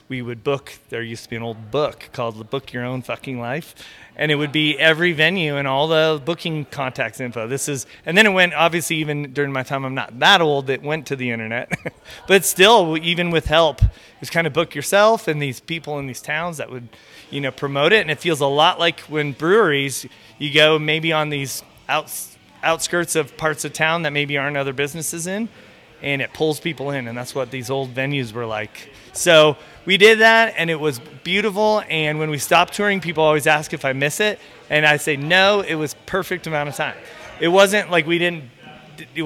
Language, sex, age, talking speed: English, male, 30-49, 220 wpm